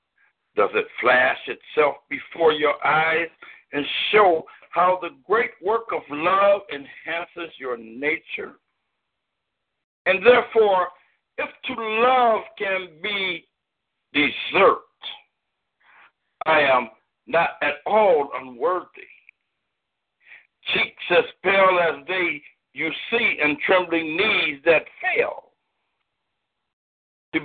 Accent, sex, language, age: American, male, English, 60-79